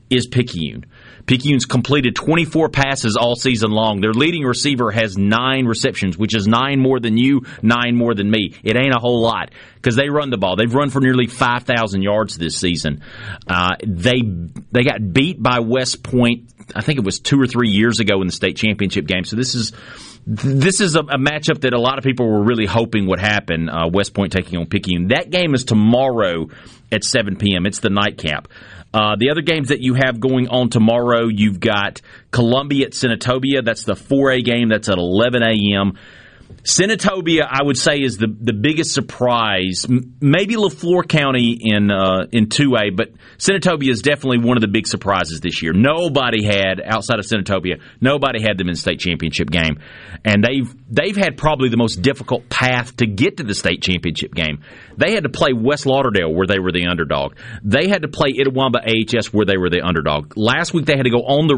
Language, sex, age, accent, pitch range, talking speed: English, male, 30-49, American, 100-130 Hz, 205 wpm